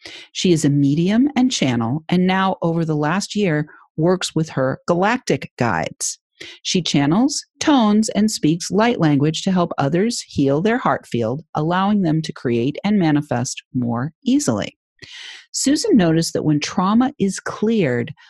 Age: 40-59